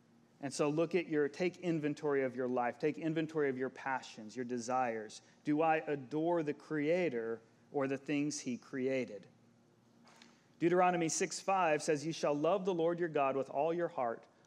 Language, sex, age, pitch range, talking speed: English, male, 40-59, 135-180 Hz, 175 wpm